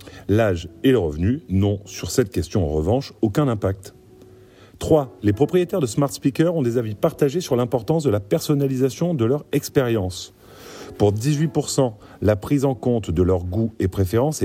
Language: French